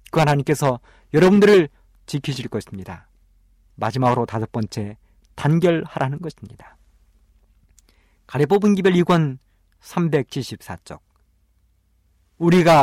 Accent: native